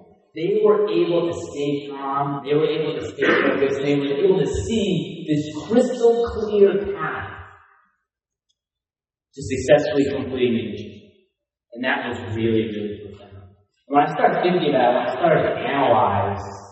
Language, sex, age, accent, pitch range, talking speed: English, male, 30-49, American, 130-200 Hz, 160 wpm